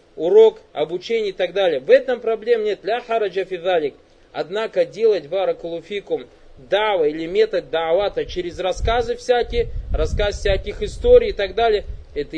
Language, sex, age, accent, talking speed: Russian, male, 20-39, native, 130 wpm